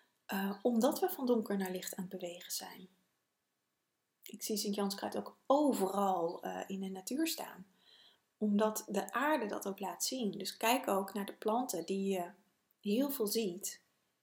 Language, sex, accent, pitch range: Dutch, female, Dutch, 185-215 Hz